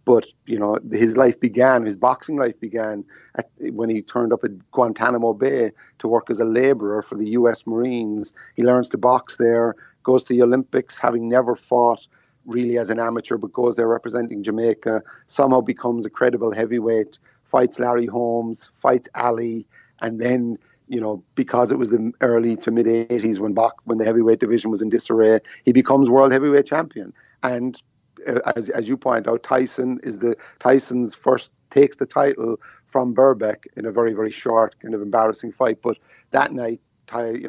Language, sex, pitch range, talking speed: English, male, 115-125 Hz, 180 wpm